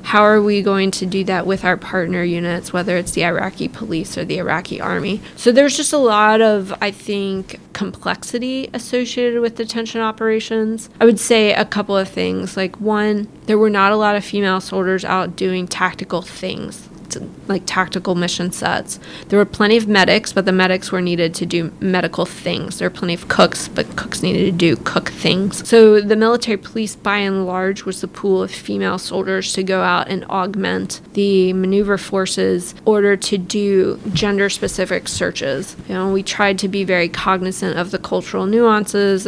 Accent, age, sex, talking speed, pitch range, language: American, 20-39, female, 190 wpm, 185-215 Hz, English